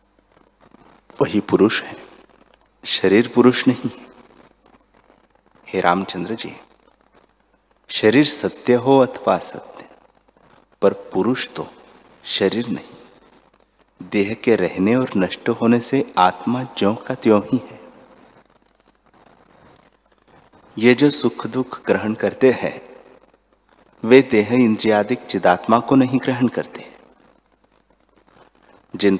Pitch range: 100-130 Hz